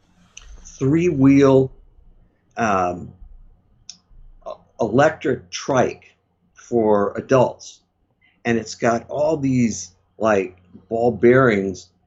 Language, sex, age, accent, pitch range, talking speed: English, male, 50-69, American, 100-125 Hz, 70 wpm